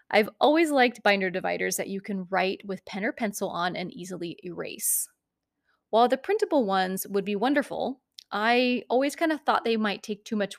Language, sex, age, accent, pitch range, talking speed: English, female, 30-49, American, 195-250 Hz, 195 wpm